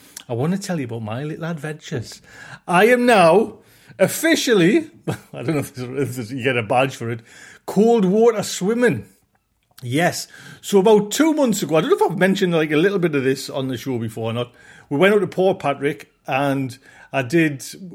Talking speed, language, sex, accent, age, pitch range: 205 wpm, English, male, British, 40-59, 135-190 Hz